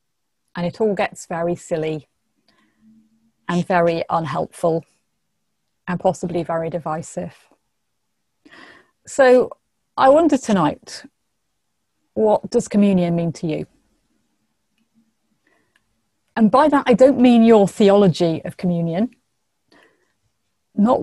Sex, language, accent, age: female, English, British, 30-49